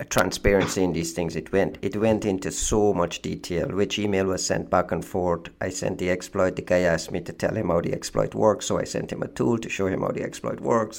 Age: 50-69